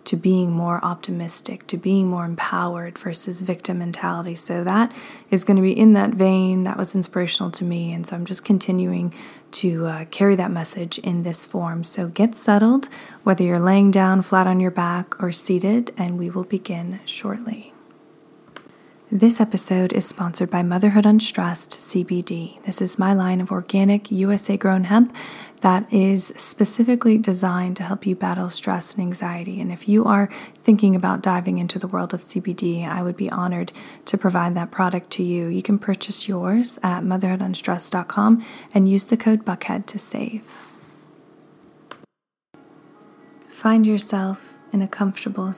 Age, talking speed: 20-39, 160 wpm